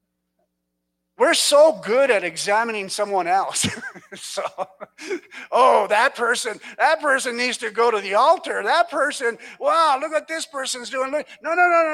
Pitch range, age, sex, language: 175-270 Hz, 50-69, male, English